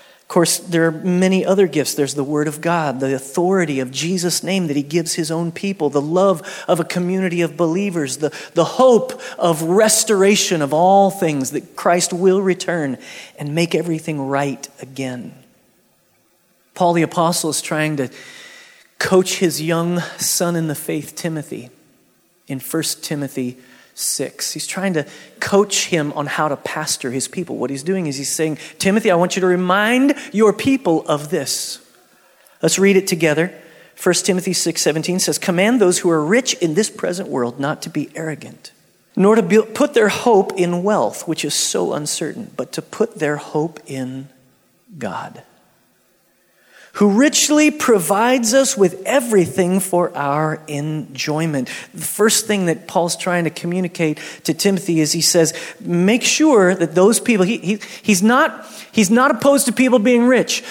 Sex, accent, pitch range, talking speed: male, American, 155-210 Hz, 165 wpm